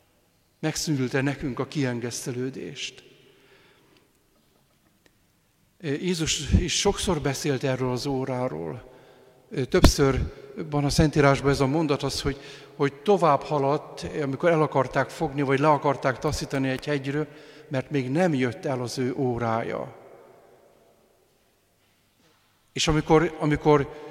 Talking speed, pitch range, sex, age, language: 110 wpm, 130-150 Hz, male, 50-69, Hungarian